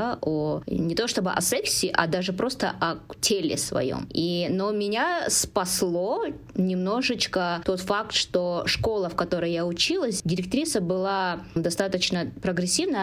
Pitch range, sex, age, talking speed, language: 175-220 Hz, female, 20-39, 125 wpm, Russian